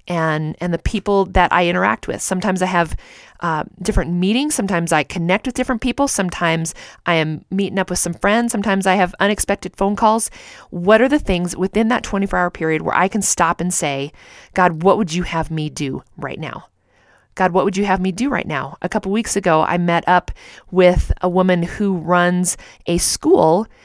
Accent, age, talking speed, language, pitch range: American, 40-59, 205 wpm, English, 170-205 Hz